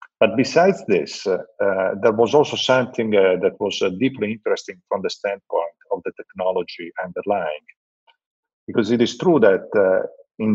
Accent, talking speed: Italian, 165 wpm